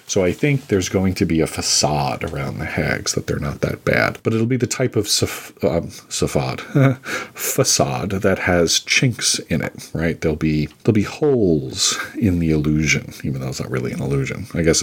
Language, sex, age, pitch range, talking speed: English, male, 40-59, 80-100 Hz, 200 wpm